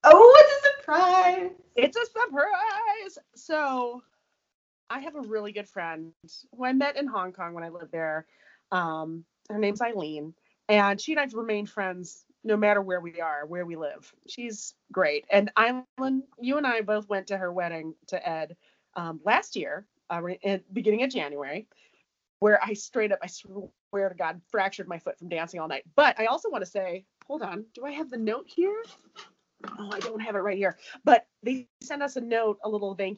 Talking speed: 195 wpm